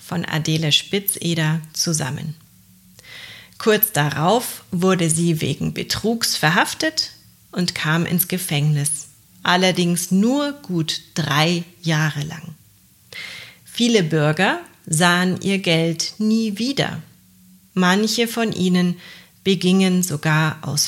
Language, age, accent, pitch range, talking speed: German, 40-59, German, 155-190 Hz, 100 wpm